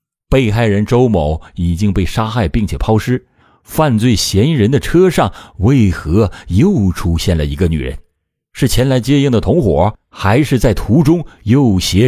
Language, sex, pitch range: Chinese, male, 95-150 Hz